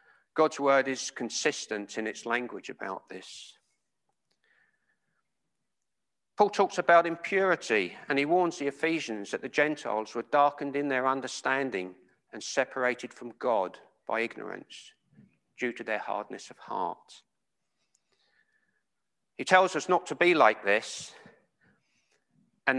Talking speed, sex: 125 wpm, male